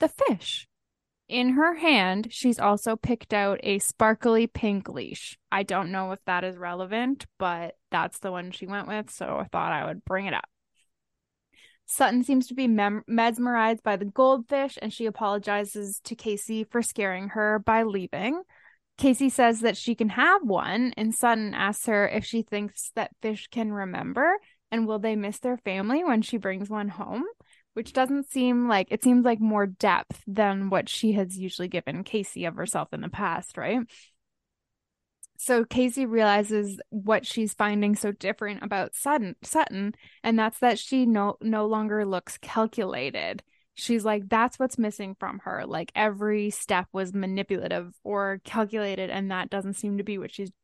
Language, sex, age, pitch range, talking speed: English, female, 10-29, 200-240 Hz, 175 wpm